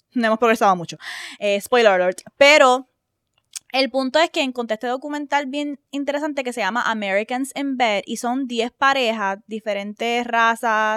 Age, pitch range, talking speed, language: 10-29, 225-285 Hz, 160 wpm, Spanish